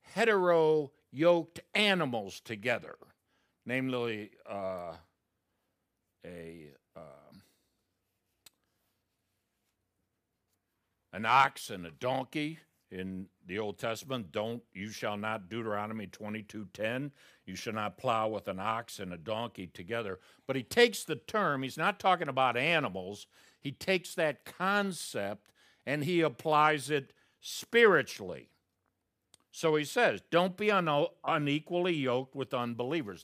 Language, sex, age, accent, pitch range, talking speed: English, male, 60-79, American, 110-170 Hz, 115 wpm